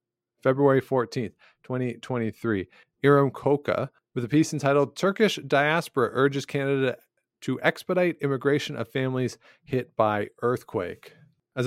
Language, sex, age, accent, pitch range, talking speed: English, male, 40-59, American, 110-135 Hz, 115 wpm